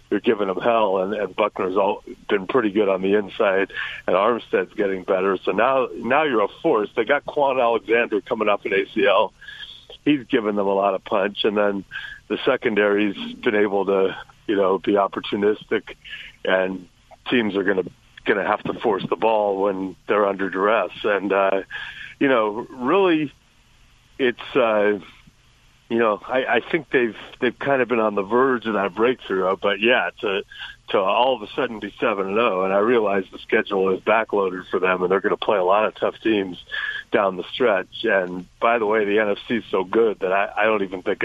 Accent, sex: American, male